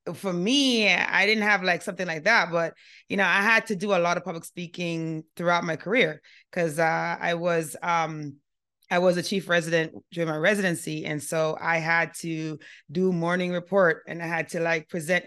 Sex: female